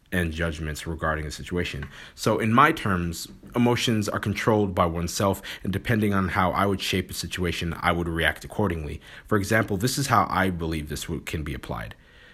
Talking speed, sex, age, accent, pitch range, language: 185 wpm, male, 30-49, American, 85-110 Hz, English